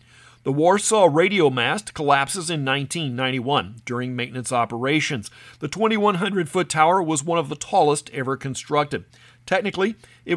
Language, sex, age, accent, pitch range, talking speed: English, male, 50-69, American, 125-180 Hz, 125 wpm